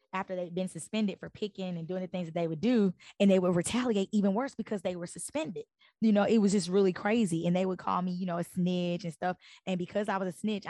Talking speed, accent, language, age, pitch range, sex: 270 wpm, American, English, 10-29, 160-185 Hz, female